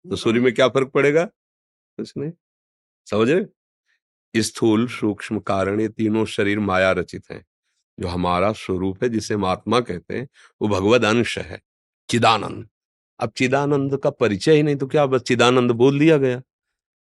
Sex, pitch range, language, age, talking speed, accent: male, 100-130 Hz, Hindi, 40-59, 145 wpm, native